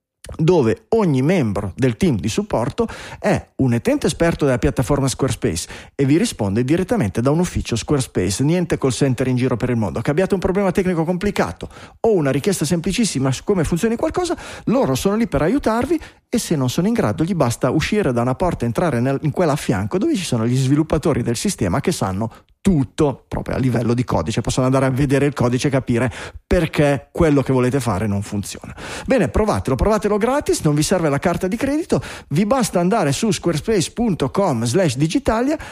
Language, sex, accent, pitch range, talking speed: Italian, male, native, 125-185 Hz, 195 wpm